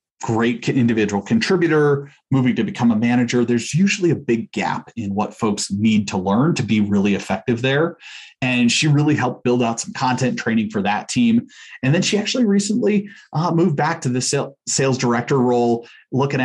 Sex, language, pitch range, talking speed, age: male, English, 115-135 Hz, 180 wpm, 30-49